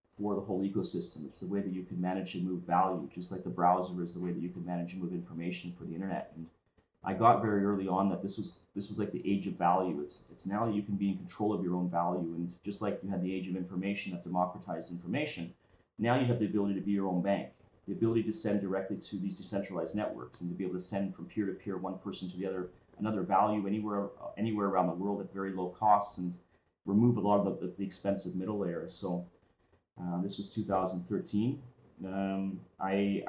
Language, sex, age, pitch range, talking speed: English, male, 30-49, 90-100 Hz, 235 wpm